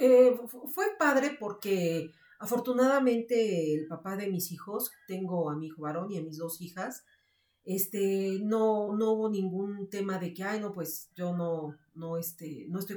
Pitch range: 175-220 Hz